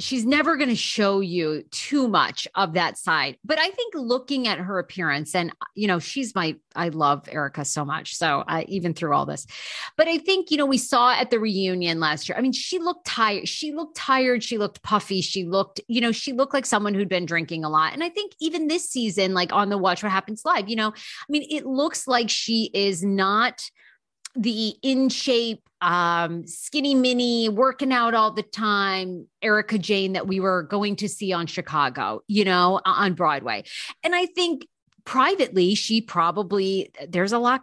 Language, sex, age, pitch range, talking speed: English, female, 30-49, 180-245 Hz, 205 wpm